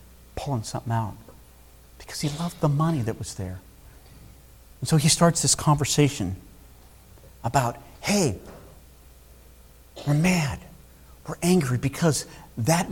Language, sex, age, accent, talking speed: English, male, 50-69, American, 115 wpm